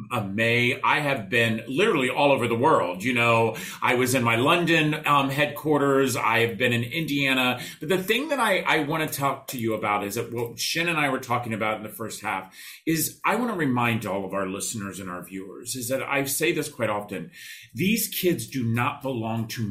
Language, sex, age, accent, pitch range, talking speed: English, male, 40-59, American, 115-150 Hz, 225 wpm